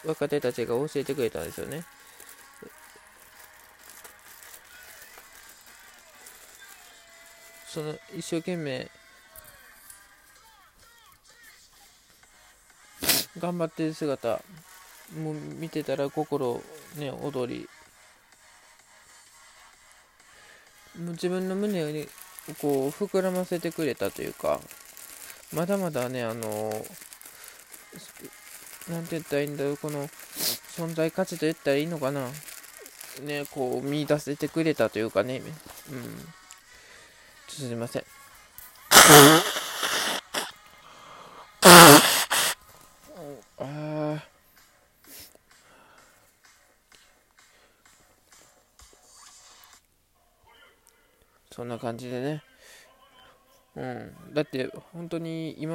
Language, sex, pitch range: Japanese, male, 130-165 Hz